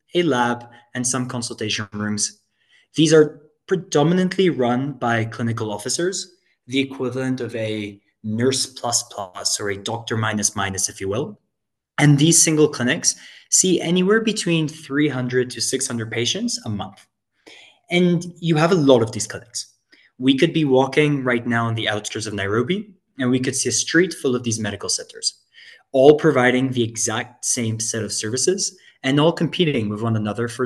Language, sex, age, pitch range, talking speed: English, male, 20-39, 120-155 Hz, 170 wpm